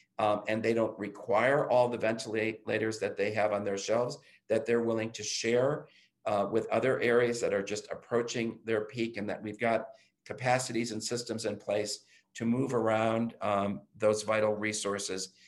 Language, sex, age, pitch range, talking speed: English, male, 50-69, 105-120 Hz, 175 wpm